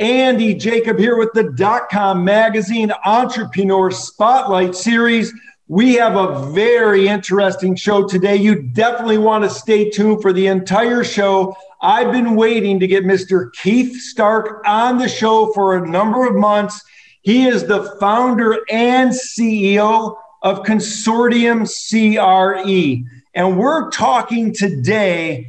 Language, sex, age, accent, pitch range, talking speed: English, male, 50-69, American, 190-225 Hz, 135 wpm